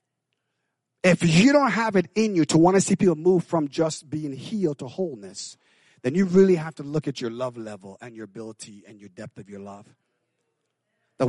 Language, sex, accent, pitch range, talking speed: English, male, American, 165-245 Hz, 205 wpm